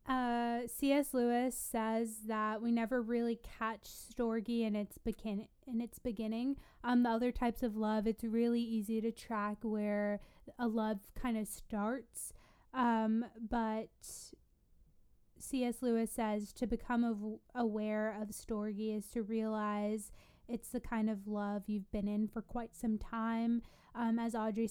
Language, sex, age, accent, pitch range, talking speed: English, female, 20-39, American, 220-240 Hz, 150 wpm